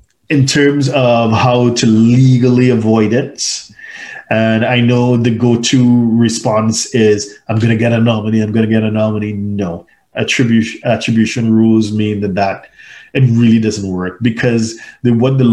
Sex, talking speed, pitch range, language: male, 160 wpm, 105-120 Hz, English